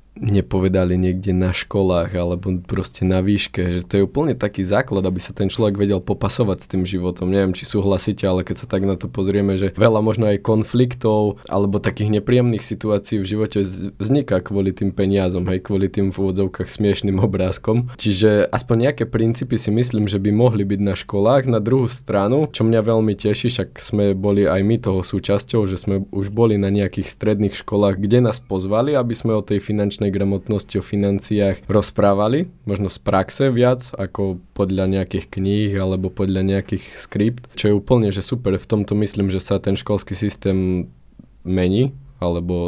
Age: 20-39